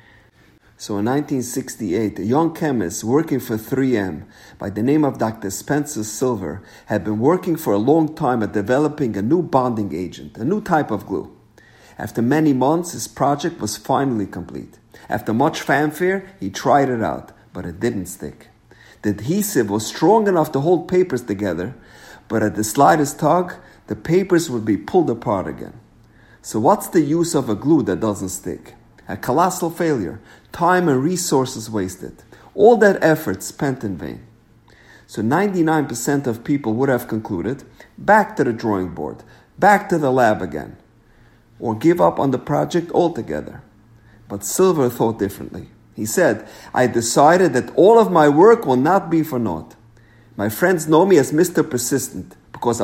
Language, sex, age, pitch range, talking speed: English, male, 50-69, 105-155 Hz, 165 wpm